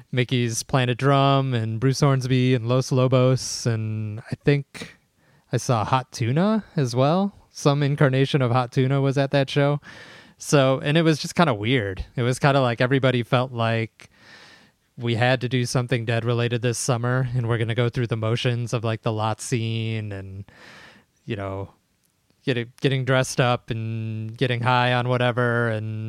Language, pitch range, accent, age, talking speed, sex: English, 110-130 Hz, American, 20-39, 175 wpm, male